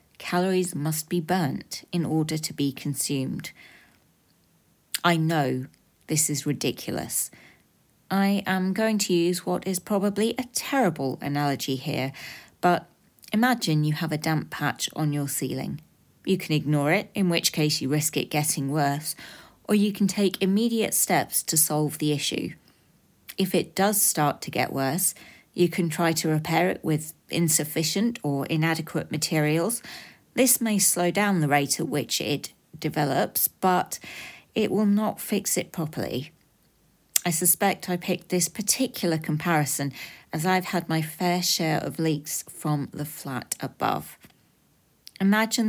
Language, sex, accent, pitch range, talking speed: English, female, British, 150-190 Hz, 150 wpm